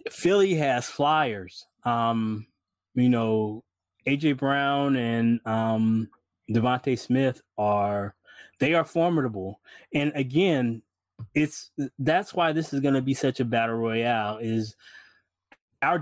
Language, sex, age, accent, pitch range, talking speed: English, male, 20-39, American, 115-155 Hz, 115 wpm